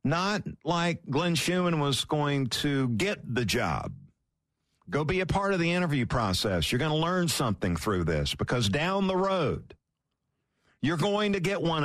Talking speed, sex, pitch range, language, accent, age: 170 wpm, male, 110-175 Hz, English, American, 50-69